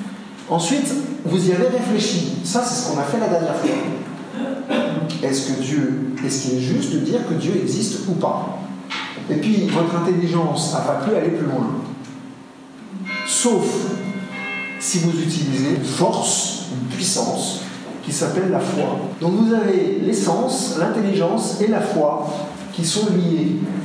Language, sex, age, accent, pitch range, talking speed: French, male, 50-69, French, 150-215 Hz, 150 wpm